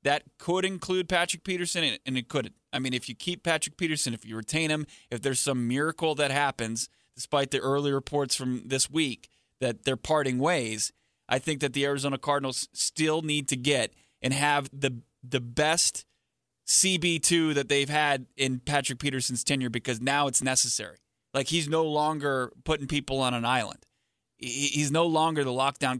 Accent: American